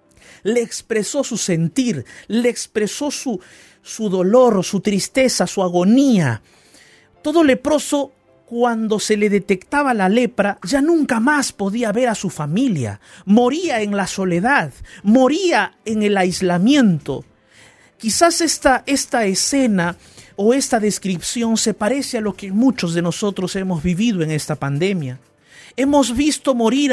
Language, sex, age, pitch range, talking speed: Spanish, male, 50-69, 195-265 Hz, 135 wpm